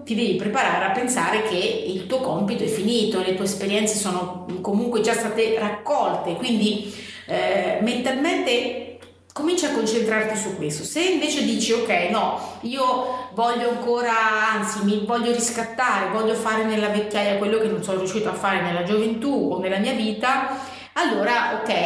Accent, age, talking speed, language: native, 30-49, 160 wpm, Italian